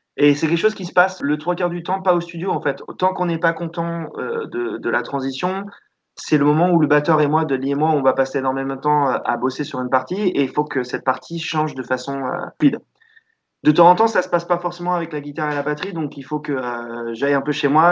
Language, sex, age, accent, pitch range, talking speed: French, male, 20-39, French, 130-170 Hz, 290 wpm